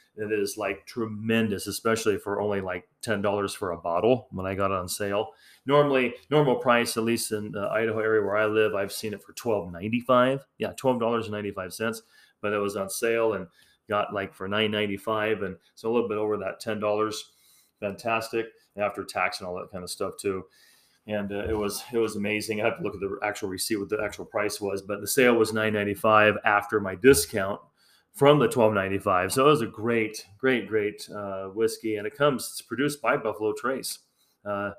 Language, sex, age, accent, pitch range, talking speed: English, male, 30-49, American, 100-115 Hz, 205 wpm